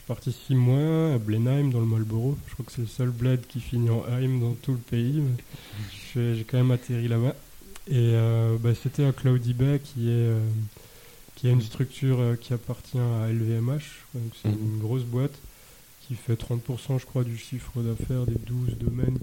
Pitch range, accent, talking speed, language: 115-130 Hz, French, 195 wpm, French